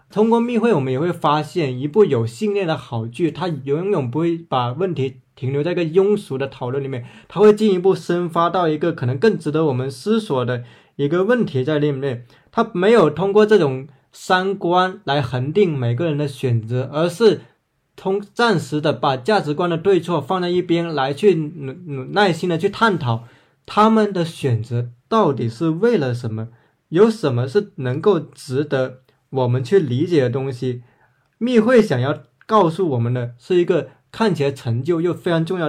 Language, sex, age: Chinese, male, 20-39